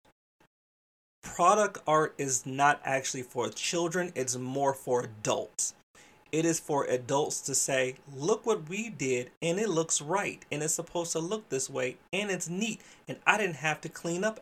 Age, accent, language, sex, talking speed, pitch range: 30-49, American, English, male, 175 wpm, 130-170 Hz